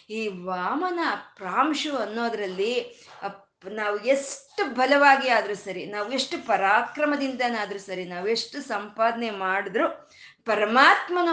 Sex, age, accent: female, 20-39, native